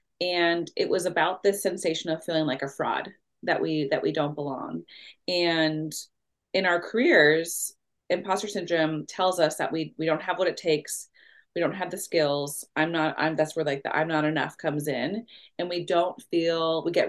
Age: 30-49